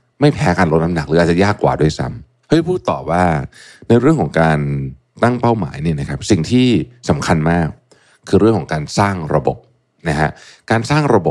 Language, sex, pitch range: Thai, male, 75-105 Hz